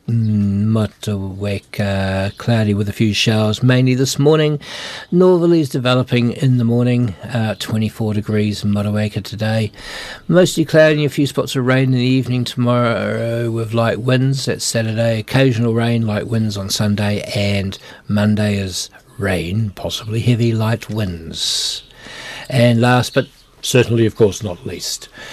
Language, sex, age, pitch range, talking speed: English, male, 60-79, 105-125 Hz, 140 wpm